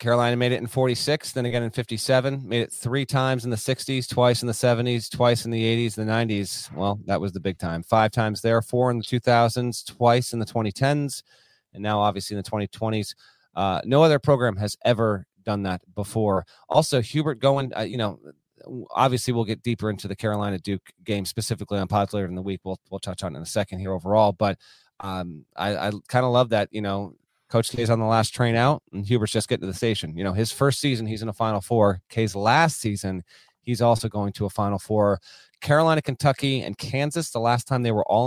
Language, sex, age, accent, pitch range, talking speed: English, male, 30-49, American, 100-125 Hz, 225 wpm